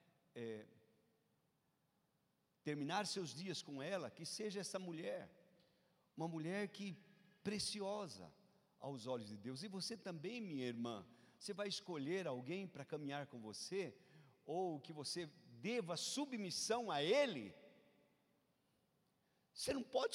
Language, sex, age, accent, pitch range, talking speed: Portuguese, male, 50-69, Brazilian, 155-220 Hz, 120 wpm